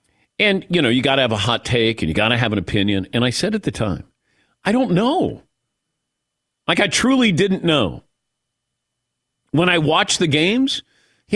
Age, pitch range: 50-69, 115-175 Hz